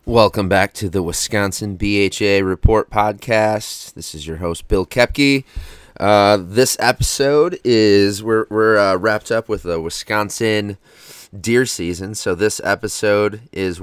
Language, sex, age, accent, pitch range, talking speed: English, male, 30-49, American, 85-105 Hz, 140 wpm